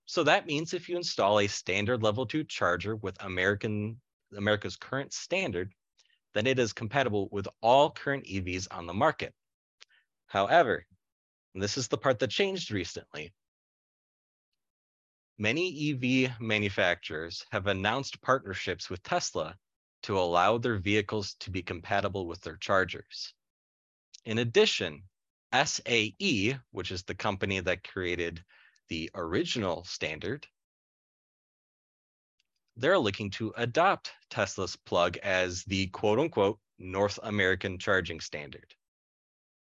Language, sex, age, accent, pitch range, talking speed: English, male, 30-49, American, 95-130 Hz, 120 wpm